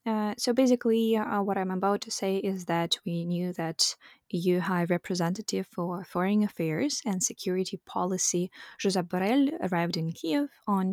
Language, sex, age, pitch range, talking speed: English, female, 20-39, 175-215 Hz, 160 wpm